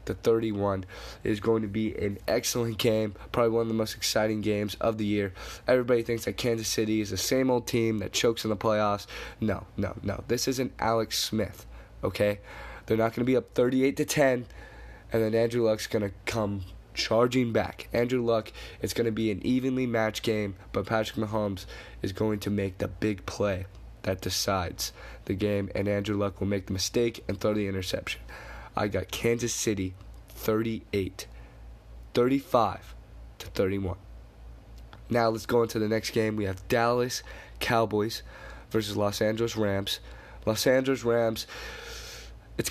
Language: English